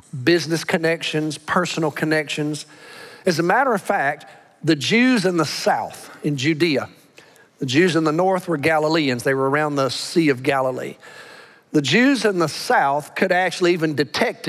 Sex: male